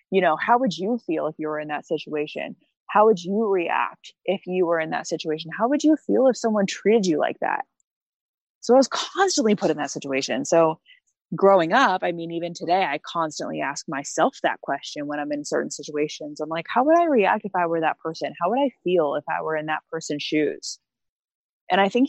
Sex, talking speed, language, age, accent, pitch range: female, 225 wpm, English, 20-39, American, 155-200 Hz